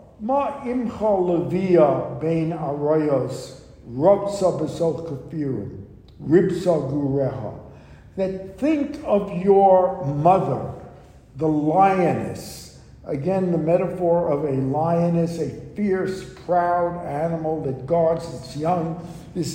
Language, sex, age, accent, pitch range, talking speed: English, male, 60-79, American, 155-200 Hz, 90 wpm